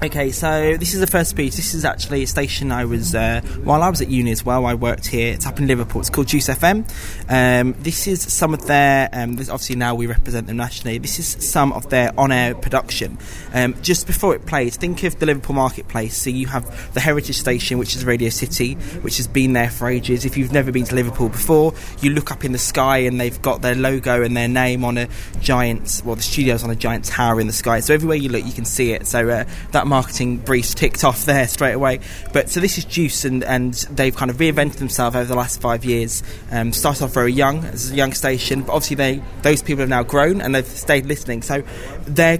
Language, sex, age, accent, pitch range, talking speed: English, male, 20-39, British, 120-140 Hz, 245 wpm